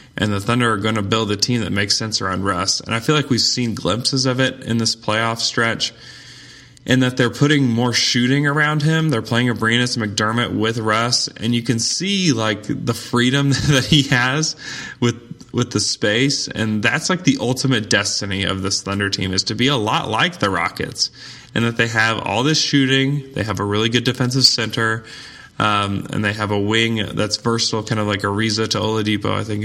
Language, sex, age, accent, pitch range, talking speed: English, male, 20-39, American, 105-130 Hz, 205 wpm